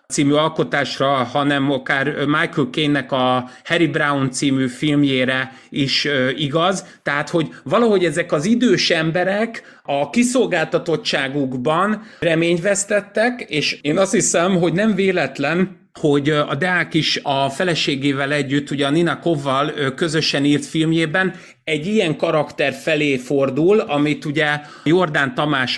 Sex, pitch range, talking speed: male, 135-170 Hz, 125 wpm